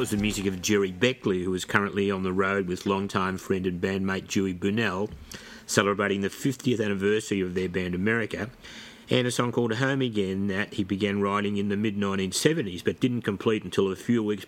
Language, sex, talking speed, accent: English, male, 190 wpm, Australian